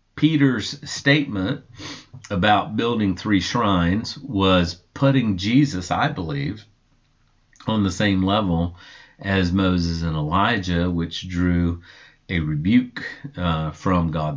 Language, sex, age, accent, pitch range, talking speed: English, male, 50-69, American, 95-135 Hz, 110 wpm